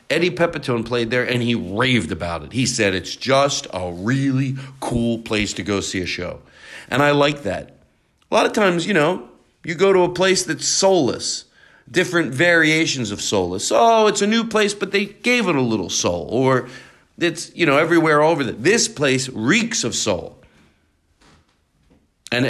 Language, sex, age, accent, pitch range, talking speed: English, male, 40-59, American, 110-165 Hz, 180 wpm